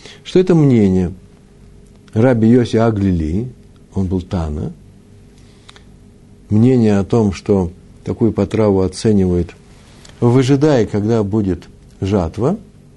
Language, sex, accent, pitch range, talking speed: Russian, male, native, 100-130 Hz, 95 wpm